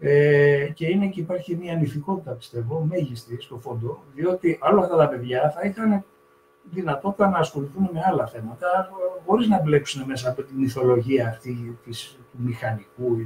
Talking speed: 165 wpm